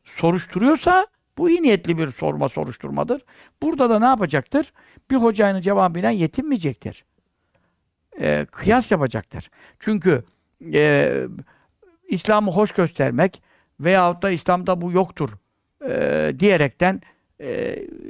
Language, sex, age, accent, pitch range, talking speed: Turkish, male, 60-79, native, 165-220 Hz, 105 wpm